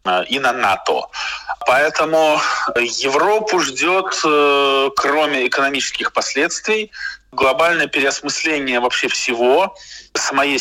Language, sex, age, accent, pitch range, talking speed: Russian, male, 20-39, native, 120-170 Hz, 80 wpm